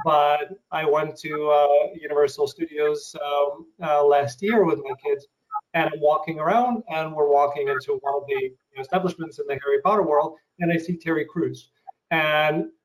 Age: 30-49